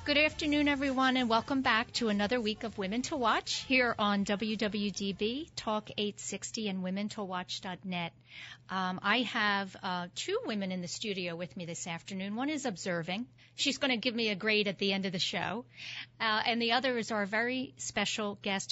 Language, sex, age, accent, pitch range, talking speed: English, female, 40-59, American, 190-230 Hz, 185 wpm